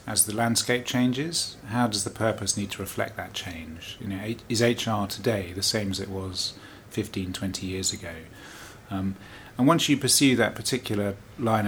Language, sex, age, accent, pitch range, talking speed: English, male, 30-49, British, 95-115 Hz, 170 wpm